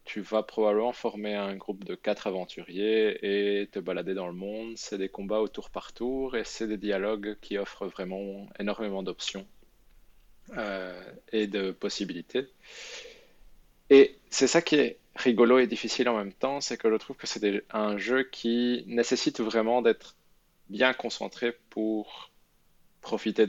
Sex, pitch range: male, 100-120 Hz